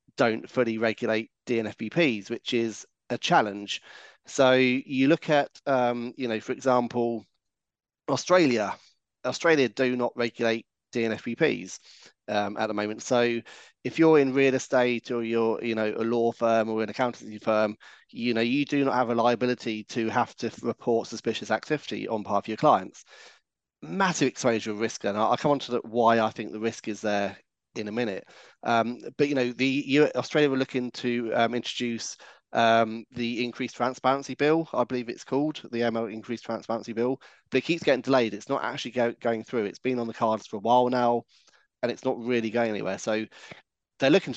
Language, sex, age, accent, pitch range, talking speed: English, male, 30-49, British, 115-130 Hz, 185 wpm